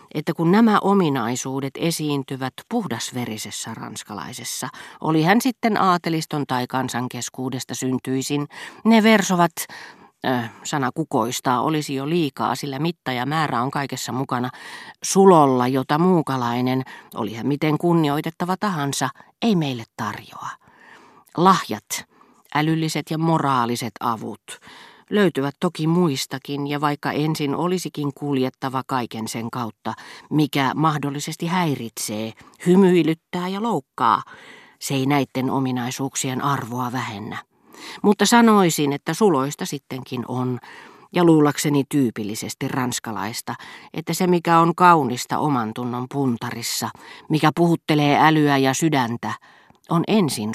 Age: 40-59